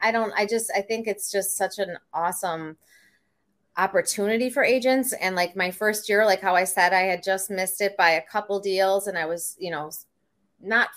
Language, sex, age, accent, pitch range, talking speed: English, female, 20-39, American, 175-215 Hz, 210 wpm